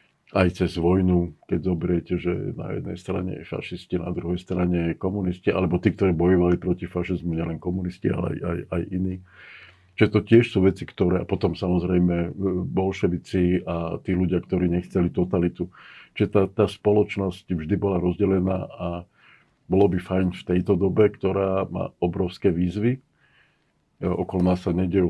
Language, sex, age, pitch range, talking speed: Slovak, male, 50-69, 90-95 Hz, 165 wpm